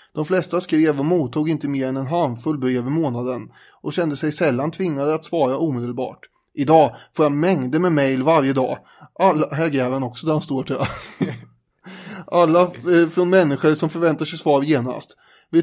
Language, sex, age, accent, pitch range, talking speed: English, male, 20-39, Swedish, 135-165 Hz, 175 wpm